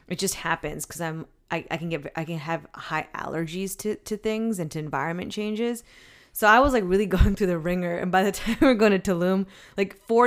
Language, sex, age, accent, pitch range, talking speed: English, female, 20-39, American, 160-190 Hz, 240 wpm